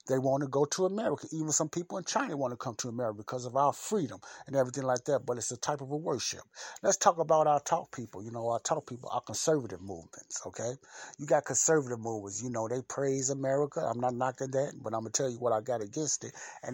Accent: American